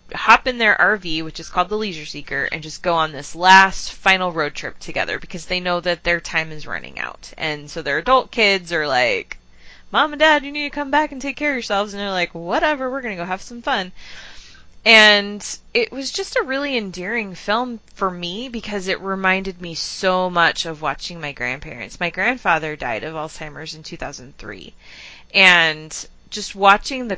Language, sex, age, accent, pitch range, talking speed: English, female, 20-39, American, 165-215 Hz, 200 wpm